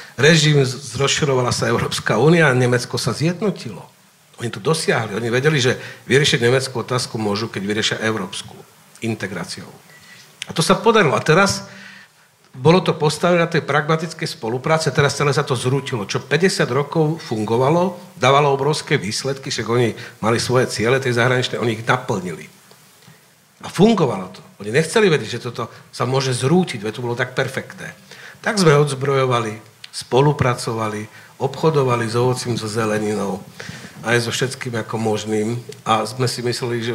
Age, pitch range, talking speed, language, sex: 50-69, 115-150 Hz, 150 wpm, Slovak, male